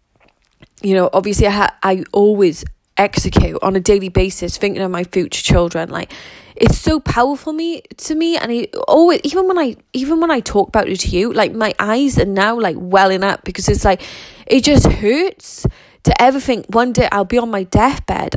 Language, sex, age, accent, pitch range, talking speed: English, female, 20-39, British, 180-230 Hz, 205 wpm